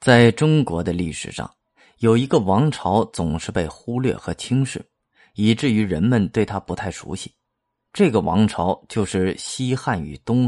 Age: 20-39